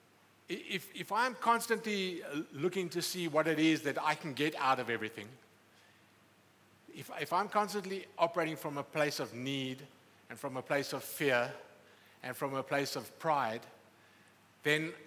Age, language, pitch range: 50-69, English, 130-175 Hz